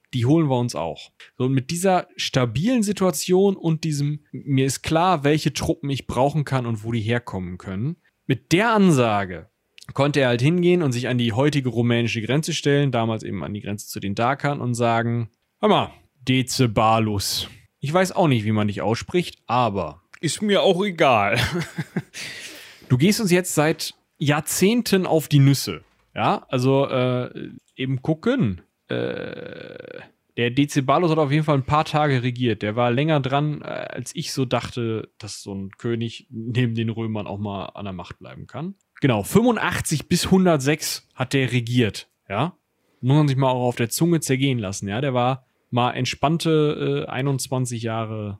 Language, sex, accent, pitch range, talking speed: German, male, German, 115-150 Hz, 170 wpm